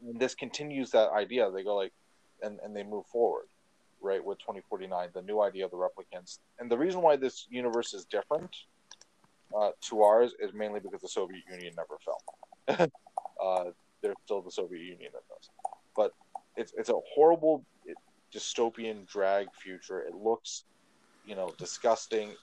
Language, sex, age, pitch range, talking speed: English, male, 30-49, 95-130 Hz, 165 wpm